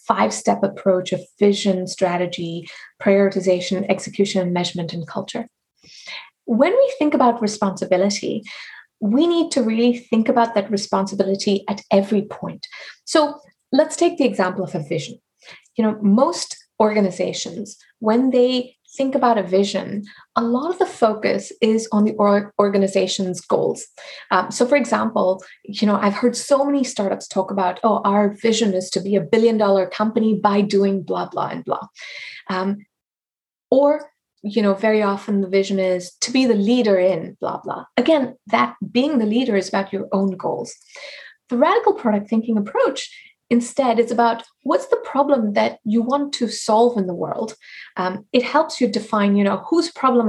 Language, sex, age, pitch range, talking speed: English, female, 30-49, 195-255 Hz, 160 wpm